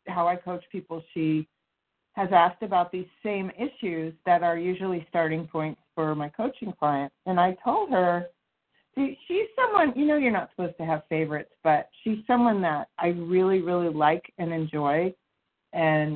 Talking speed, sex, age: 165 wpm, female, 40-59